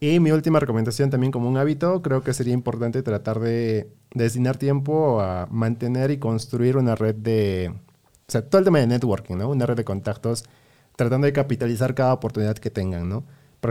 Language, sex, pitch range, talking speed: Spanish, male, 105-135 Hz, 195 wpm